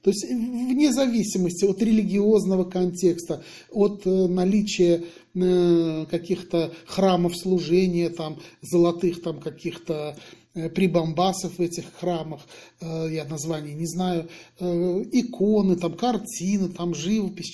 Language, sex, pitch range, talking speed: Russian, male, 170-215 Hz, 100 wpm